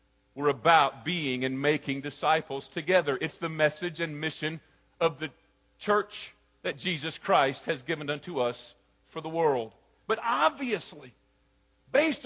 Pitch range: 175-220 Hz